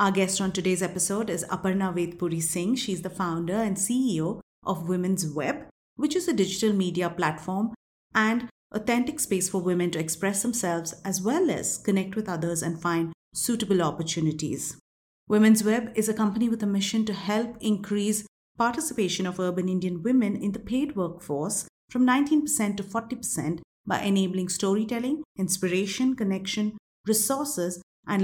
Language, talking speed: English, 155 wpm